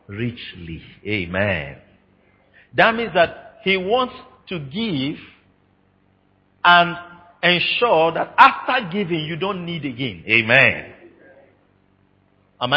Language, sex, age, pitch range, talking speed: English, male, 50-69, 95-150 Hz, 95 wpm